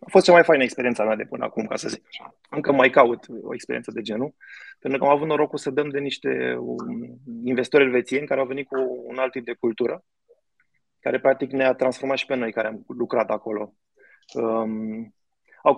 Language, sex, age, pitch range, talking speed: Romanian, male, 20-39, 125-150 Hz, 205 wpm